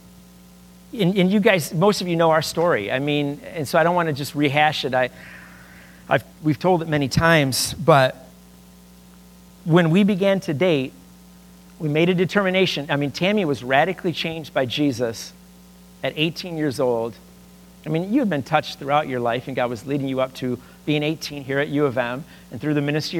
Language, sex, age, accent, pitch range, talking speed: English, male, 50-69, American, 105-155 Hz, 195 wpm